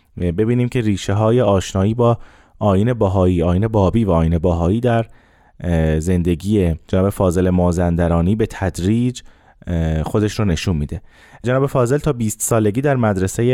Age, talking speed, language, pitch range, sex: 30-49, 135 wpm, Persian, 95-125 Hz, male